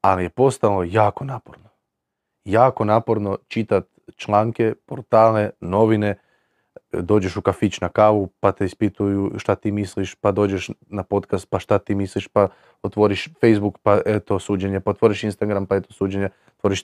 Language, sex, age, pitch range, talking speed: Croatian, male, 30-49, 105-140 Hz, 155 wpm